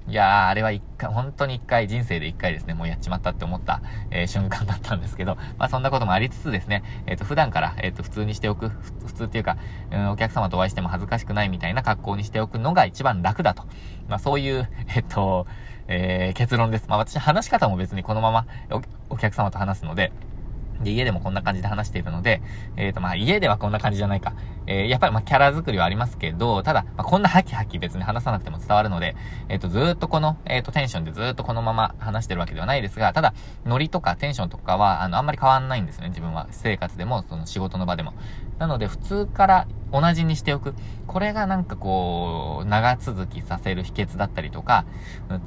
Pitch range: 95-130 Hz